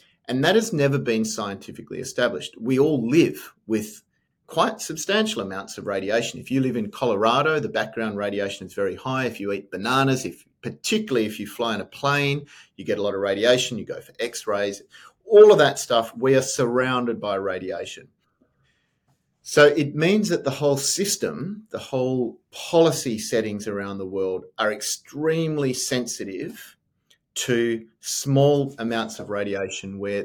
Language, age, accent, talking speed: English, 30-49, Australian, 165 wpm